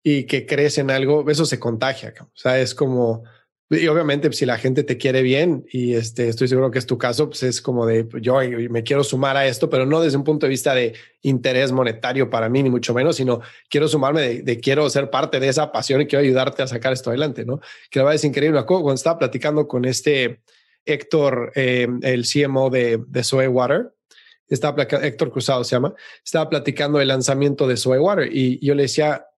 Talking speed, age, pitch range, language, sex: 225 wpm, 30-49, 130-155 Hz, Spanish, male